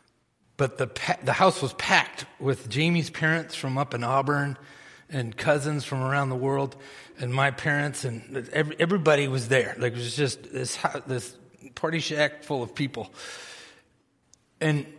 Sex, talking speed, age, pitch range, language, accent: male, 150 wpm, 30-49, 135-175 Hz, English, American